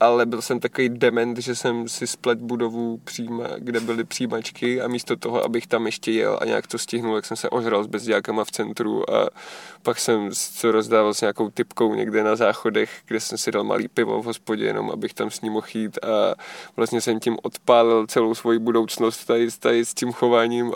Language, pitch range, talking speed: Czech, 115-125 Hz, 210 wpm